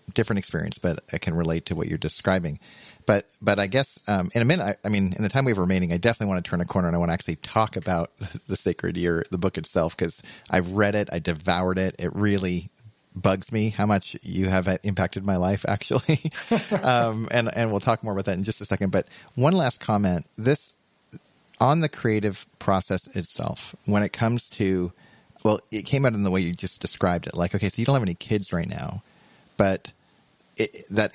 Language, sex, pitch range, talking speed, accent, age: English, male, 95-120 Hz, 225 wpm, American, 40-59